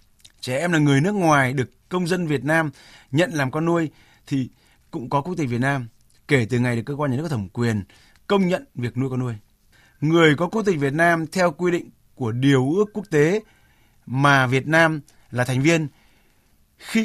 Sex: male